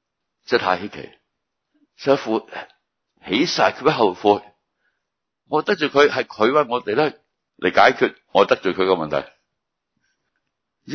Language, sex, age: Chinese, male, 60-79